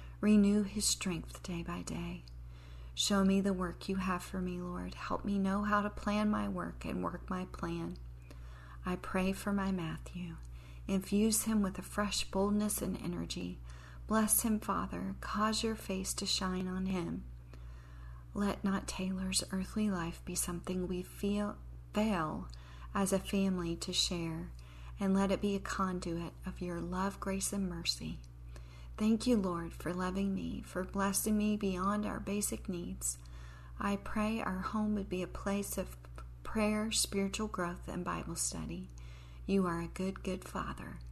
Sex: female